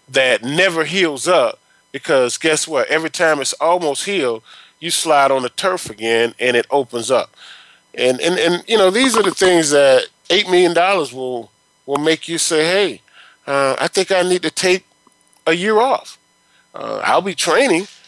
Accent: American